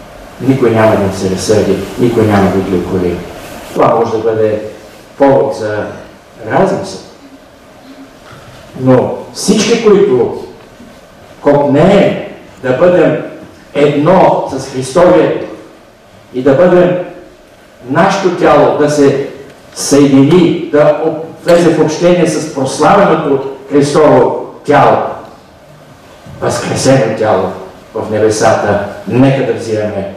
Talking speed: 95 wpm